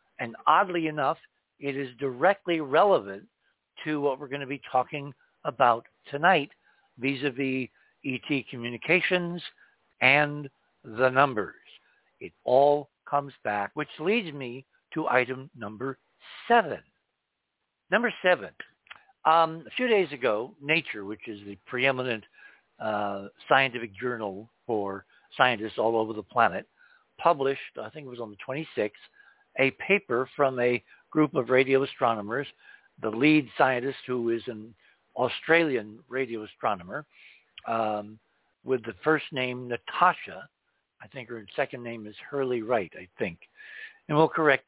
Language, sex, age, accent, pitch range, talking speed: English, male, 60-79, American, 115-155 Hz, 130 wpm